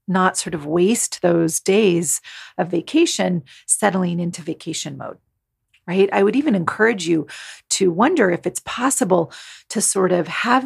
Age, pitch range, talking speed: 40-59, 155-190 Hz, 150 wpm